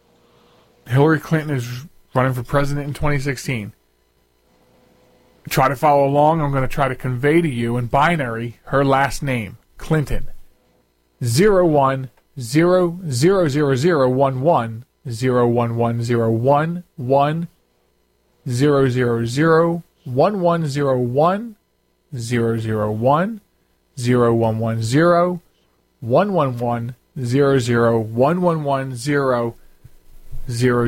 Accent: American